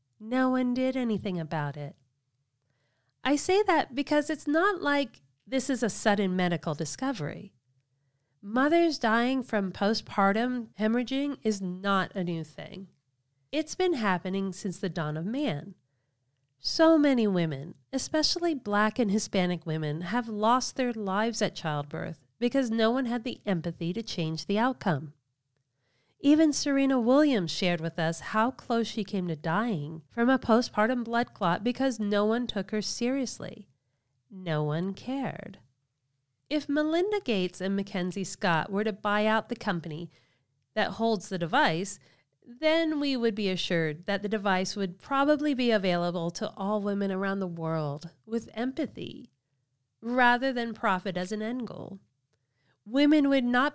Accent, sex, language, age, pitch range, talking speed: American, female, English, 40-59, 160-245 Hz, 150 wpm